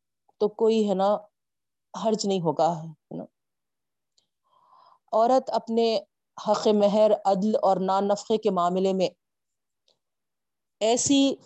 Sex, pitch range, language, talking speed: female, 185-225 Hz, Urdu, 100 wpm